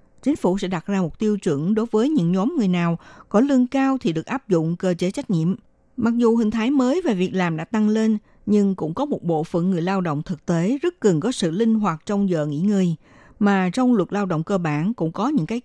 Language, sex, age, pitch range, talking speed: Vietnamese, female, 60-79, 170-230 Hz, 260 wpm